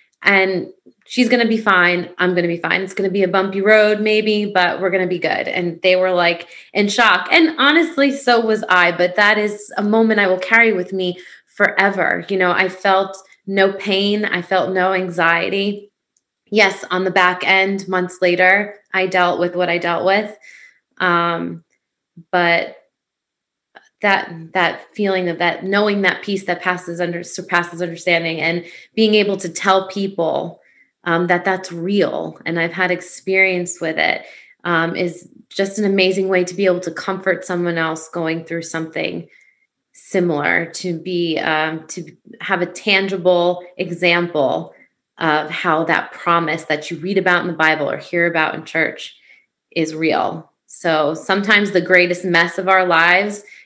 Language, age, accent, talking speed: English, 20-39, American, 170 wpm